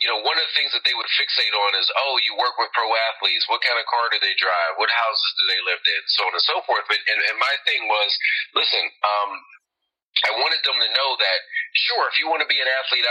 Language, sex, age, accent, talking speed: English, male, 40-59, American, 265 wpm